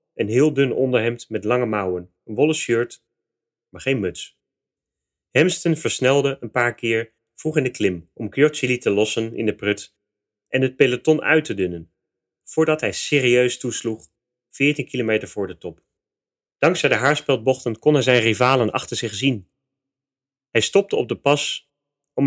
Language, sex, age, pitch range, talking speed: English, male, 30-49, 105-145 Hz, 160 wpm